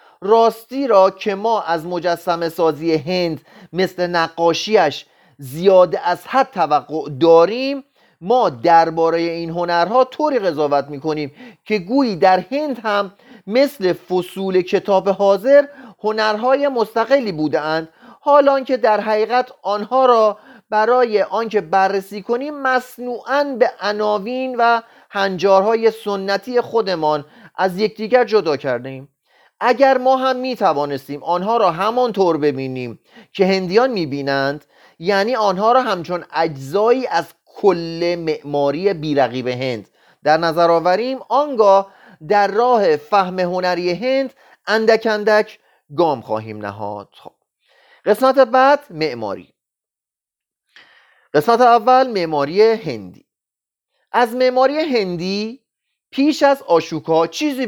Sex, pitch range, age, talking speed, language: male, 165-240 Hz, 30-49, 115 wpm, Persian